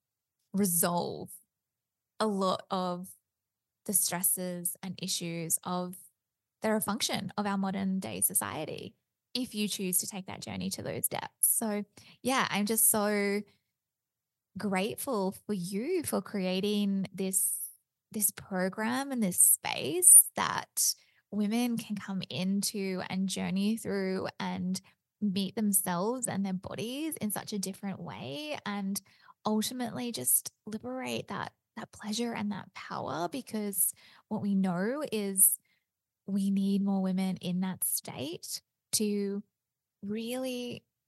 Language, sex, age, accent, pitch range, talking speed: English, female, 20-39, Australian, 185-210 Hz, 125 wpm